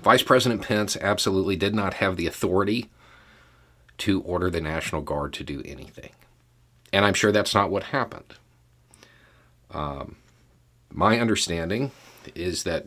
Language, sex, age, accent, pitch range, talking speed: English, male, 40-59, American, 80-120 Hz, 135 wpm